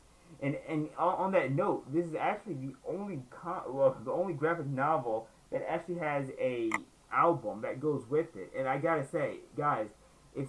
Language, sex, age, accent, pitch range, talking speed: English, male, 20-39, American, 125-160 Hz, 175 wpm